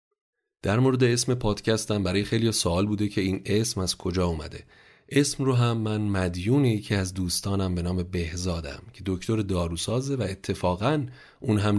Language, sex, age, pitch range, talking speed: Persian, male, 30-49, 90-115 Hz, 165 wpm